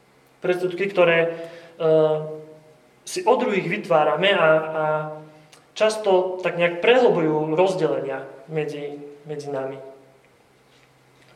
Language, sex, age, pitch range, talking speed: Slovak, male, 30-49, 150-180 Hz, 85 wpm